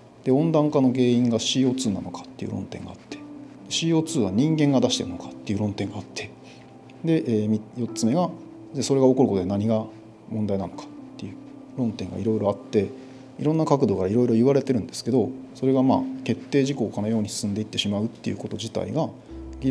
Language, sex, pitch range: Japanese, male, 105-135 Hz